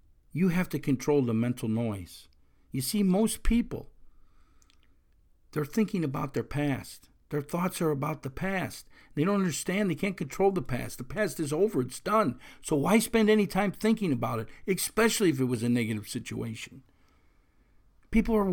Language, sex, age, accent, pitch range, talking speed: English, male, 50-69, American, 125-200 Hz, 170 wpm